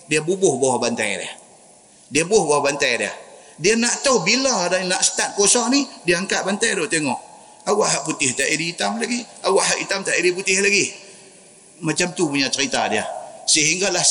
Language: Malay